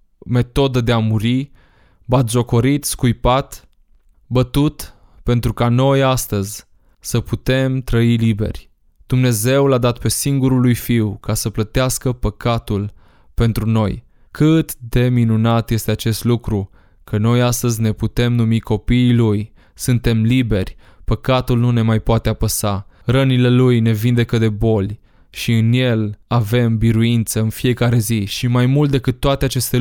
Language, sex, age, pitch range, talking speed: Romanian, male, 20-39, 110-125 Hz, 140 wpm